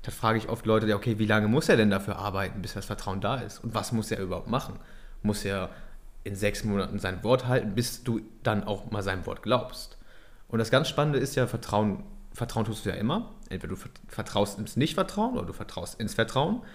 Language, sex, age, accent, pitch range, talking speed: German, male, 30-49, German, 105-125 Hz, 220 wpm